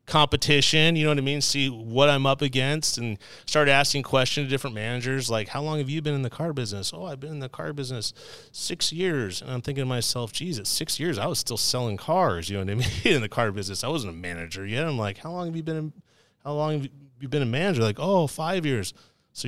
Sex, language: male, English